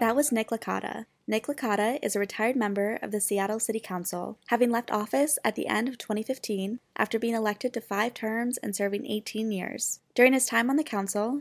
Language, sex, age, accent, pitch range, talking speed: English, female, 20-39, American, 205-240 Hz, 205 wpm